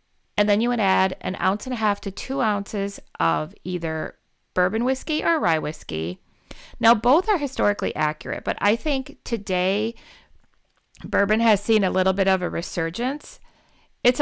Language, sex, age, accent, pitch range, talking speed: English, female, 40-59, American, 180-230 Hz, 165 wpm